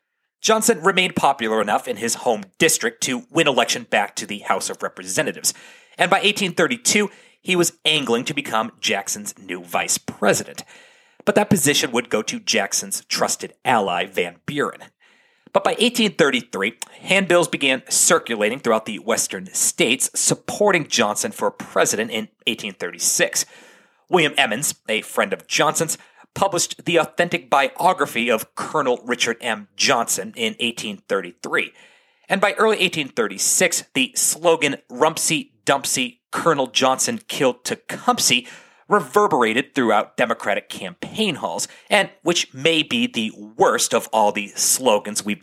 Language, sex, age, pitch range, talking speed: English, male, 40-59, 145-225 Hz, 135 wpm